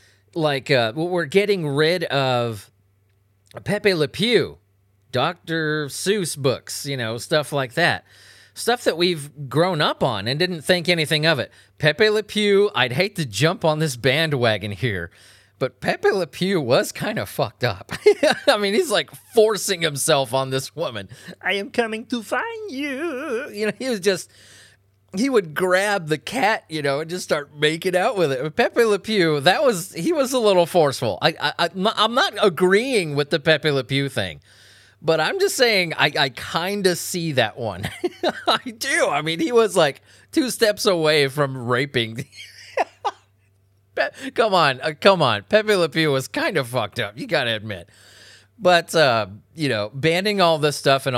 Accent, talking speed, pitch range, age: American, 180 wpm, 115-190 Hz, 30-49